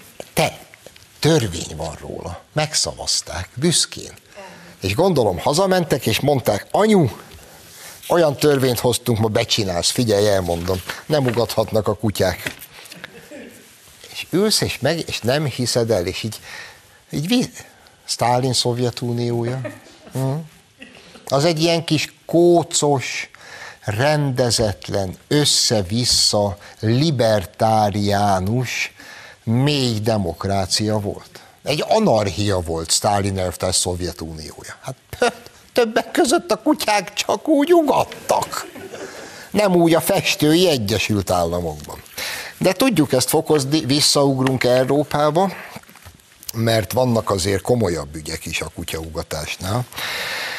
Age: 60-79